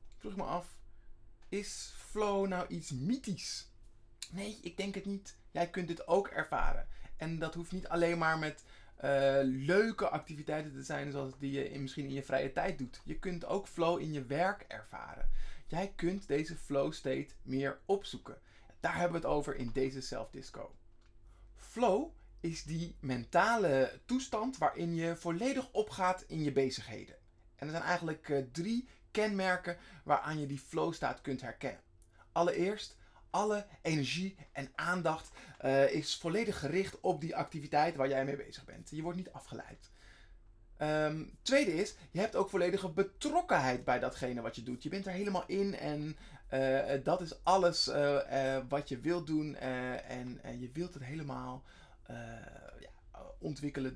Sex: male